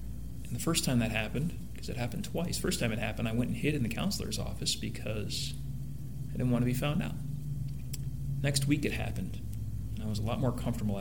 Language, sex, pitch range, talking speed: English, male, 105-125 Hz, 225 wpm